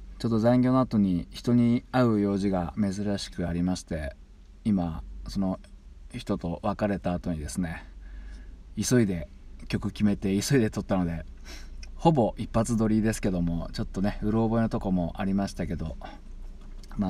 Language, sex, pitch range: Japanese, male, 85-115 Hz